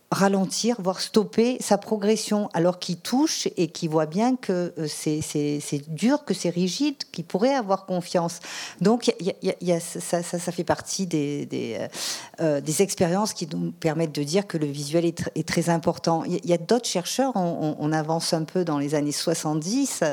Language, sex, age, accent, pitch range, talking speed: French, female, 50-69, French, 160-205 Hz, 175 wpm